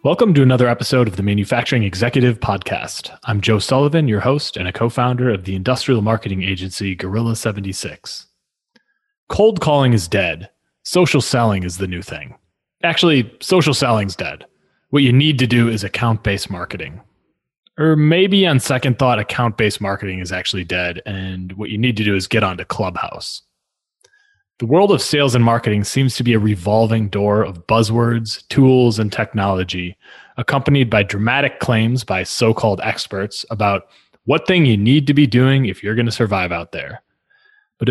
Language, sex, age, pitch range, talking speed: English, male, 30-49, 105-130 Hz, 175 wpm